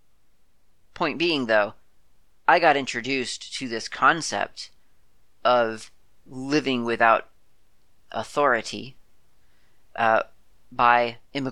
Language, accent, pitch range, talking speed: English, American, 110-130 Hz, 85 wpm